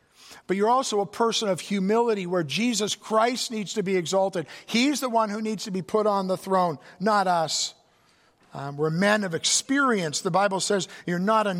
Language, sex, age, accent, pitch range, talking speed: English, male, 50-69, American, 170-215 Hz, 195 wpm